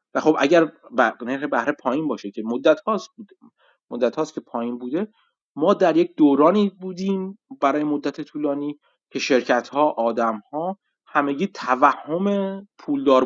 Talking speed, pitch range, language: 145 wpm, 120-170 Hz, Persian